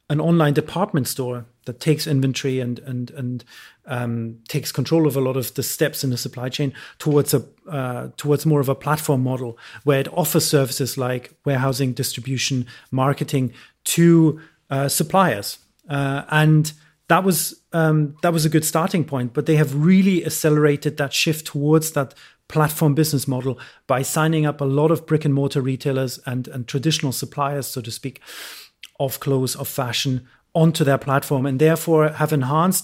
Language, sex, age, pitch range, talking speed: English, male, 30-49, 130-155 Hz, 170 wpm